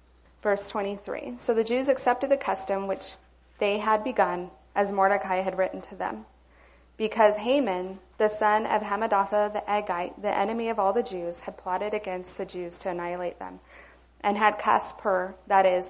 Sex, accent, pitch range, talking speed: female, American, 185-215 Hz, 175 wpm